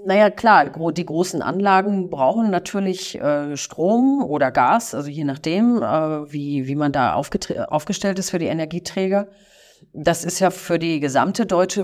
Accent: German